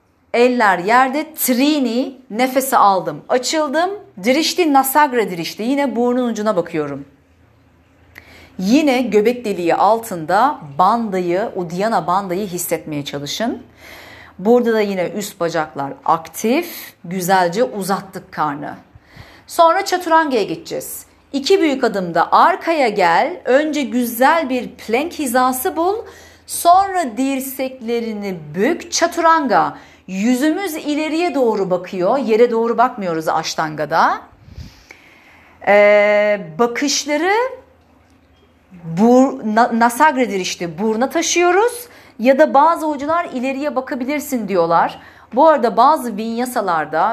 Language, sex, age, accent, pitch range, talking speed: Turkish, female, 40-59, native, 180-275 Hz, 100 wpm